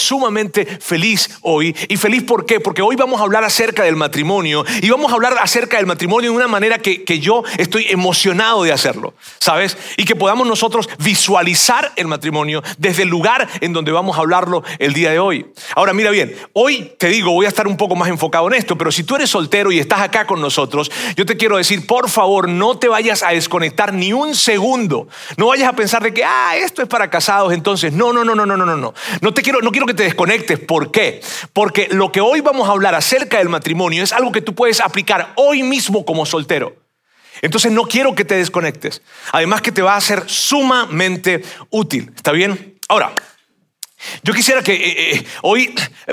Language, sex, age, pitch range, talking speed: Spanish, male, 40-59, 180-230 Hz, 210 wpm